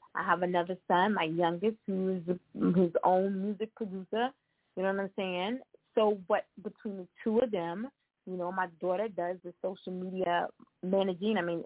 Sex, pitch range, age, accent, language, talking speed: female, 180-230 Hz, 20-39, American, English, 175 wpm